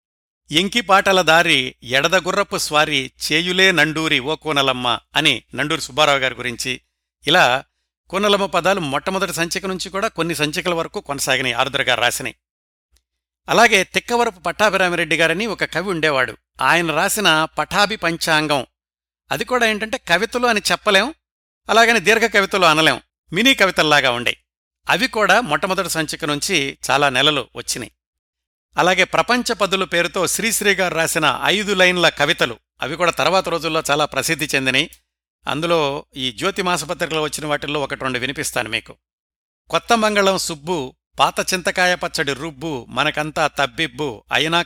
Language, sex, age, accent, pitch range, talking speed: Telugu, male, 60-79, native, 135-185 Hz, 120 wpm